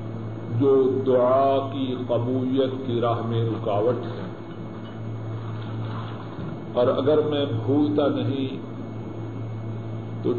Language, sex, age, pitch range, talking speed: Urdu, male, 50-69, 110-135 Hz, 85 wpm